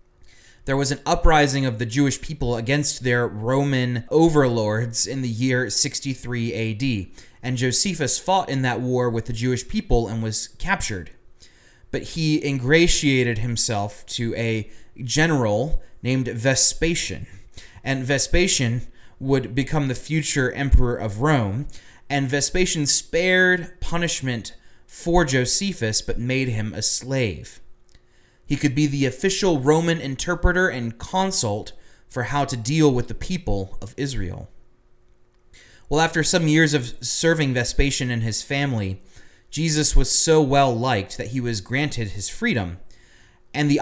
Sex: male